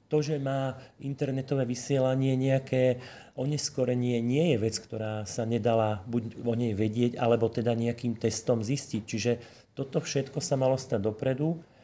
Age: 40-59